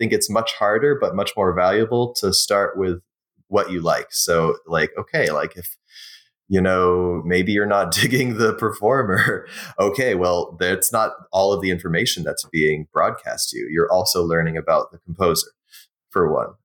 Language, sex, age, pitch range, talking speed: English, male, 20-39, 85-110 Hz, 175 wpm